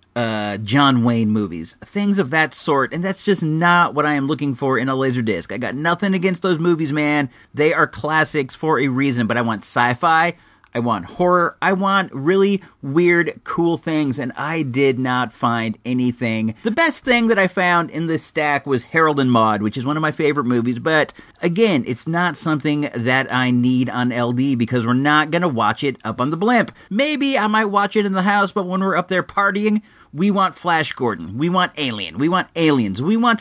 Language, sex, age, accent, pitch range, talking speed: English, male, 40-59, American, 125-185 Hz, 210 wpm